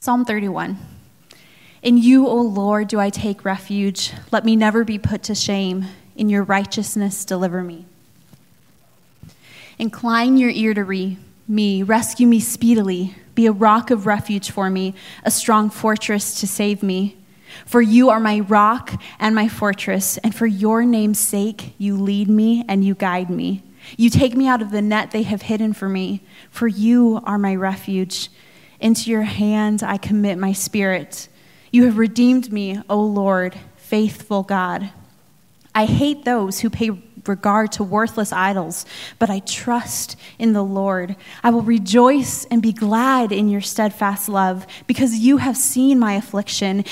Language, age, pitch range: English, 20-39, 195-225 Hz